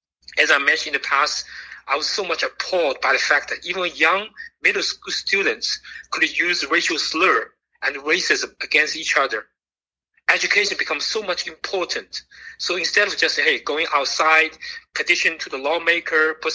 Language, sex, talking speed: English, male, 165 wpm